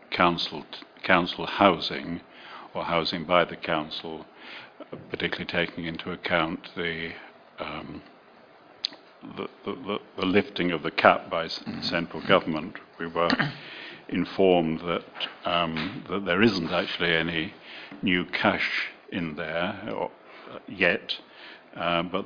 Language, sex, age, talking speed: English, male, 60-79, 110 wpm